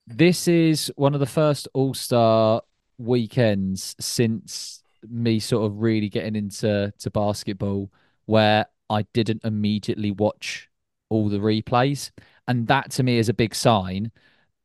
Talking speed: 135 wpm